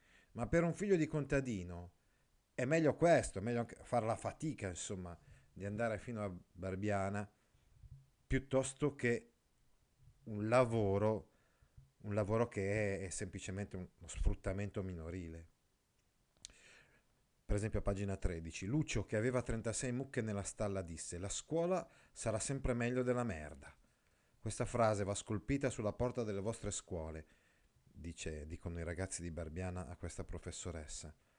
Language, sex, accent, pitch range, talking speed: Italian, male, native, 85-120 Hz, 135 wpm